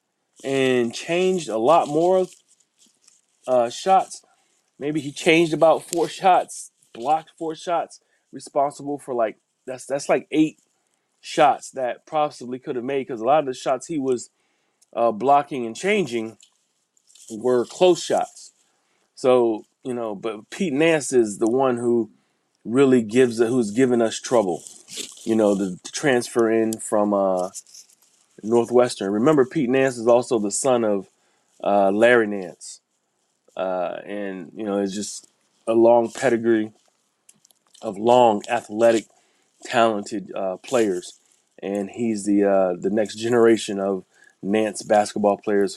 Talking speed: 140 wpm